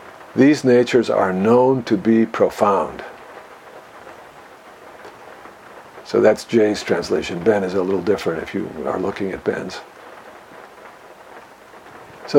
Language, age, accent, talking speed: English, 50-69, American, 110 wpm